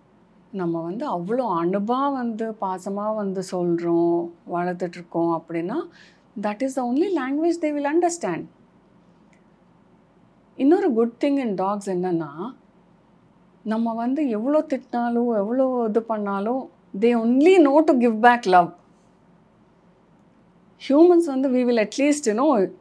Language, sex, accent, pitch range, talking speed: Tamil, female, native, 185-250 Hz, 115 wpm